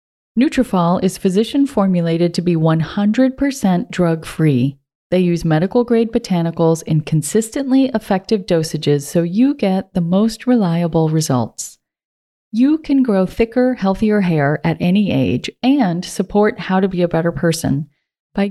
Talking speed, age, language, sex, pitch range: 130 wpm, 40-59, English, female, 170-235 Hz